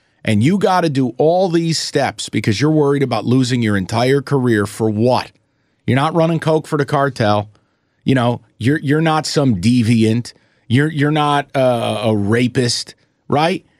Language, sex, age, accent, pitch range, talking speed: English, male, 40-59, American, 110-145 Hz, 170 wpm